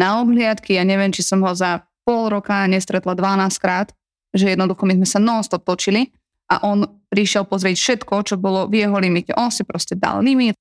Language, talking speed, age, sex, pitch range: Slovak, 190 wpm, 20-39, female, 190-225 Hz